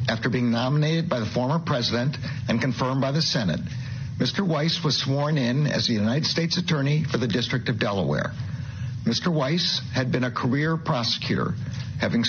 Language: English